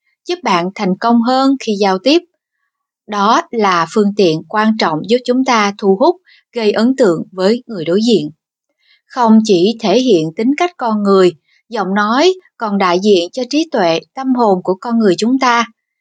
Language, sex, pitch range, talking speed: Vietnamese, female, 195-265 Hz, 185 wpm